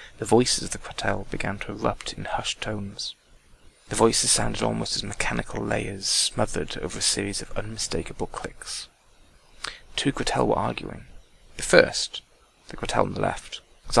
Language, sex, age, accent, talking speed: English, male, 30-49, British, 160 wpm